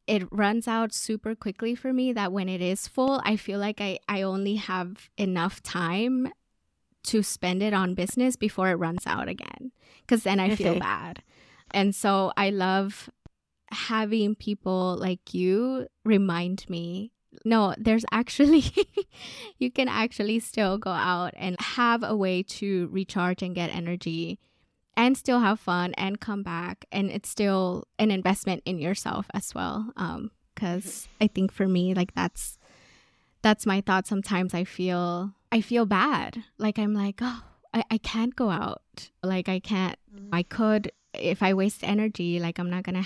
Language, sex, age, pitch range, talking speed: English, female, 20-39, 185-220 Hz, 165 wpm